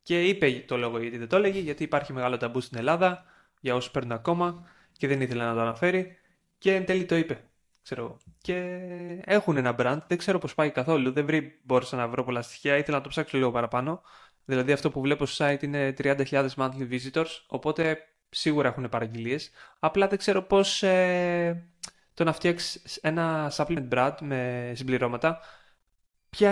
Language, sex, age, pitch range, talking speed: Greek, male, 20-39, 125-165 Hz, 175 wpm